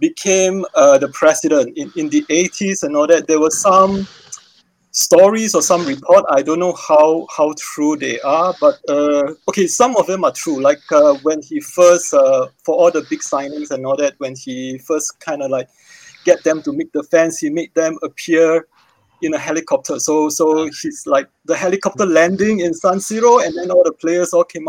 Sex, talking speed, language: male, 205 wpm, English